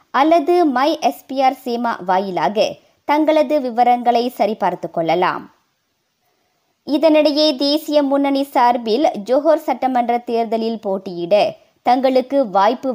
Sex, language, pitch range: male, Tamil, 215-305 Hz